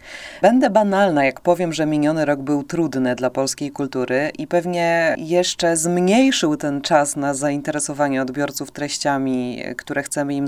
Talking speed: 145 wpm